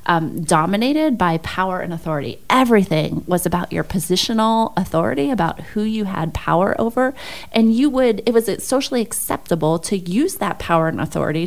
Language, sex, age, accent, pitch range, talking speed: English, female, 30-49, American, 160-215 Hz, 160 wpm